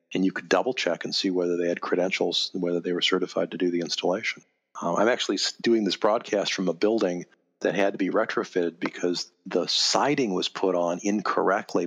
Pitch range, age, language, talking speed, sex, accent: 90-110 Hz, 40-59, English, 200 wpm, male, American